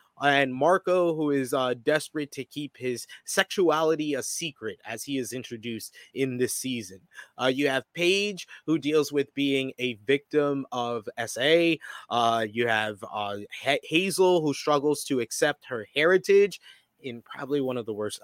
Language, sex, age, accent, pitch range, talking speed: English, male, 20-39, American, 130-160 Hz, 160 wpm